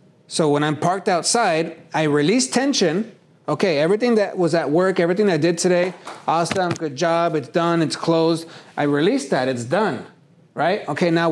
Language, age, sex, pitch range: English, 30-49, male, 160-195 Hz